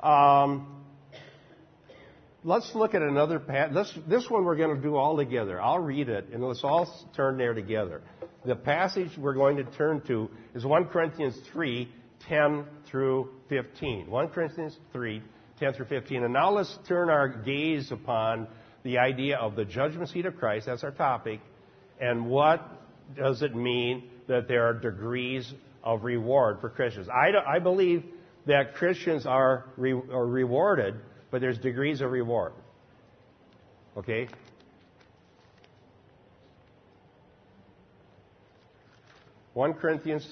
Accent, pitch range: American, 120-150 Hz